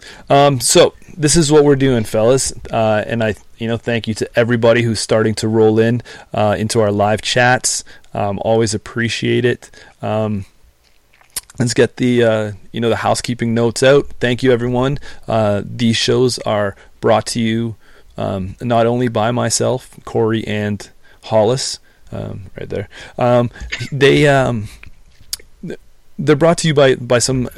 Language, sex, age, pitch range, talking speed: English, male, 30-49, 105-125 Hz, 160 wpm